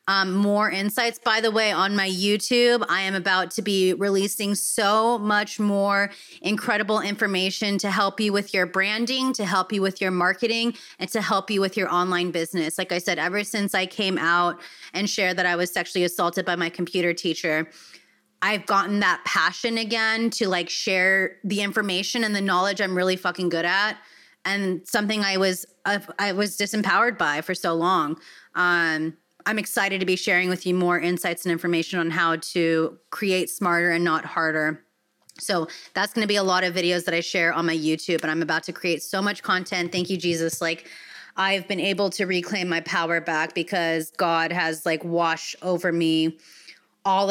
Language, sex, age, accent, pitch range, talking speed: English, female, 20-39, American, 165-195 Hz, 195 wpm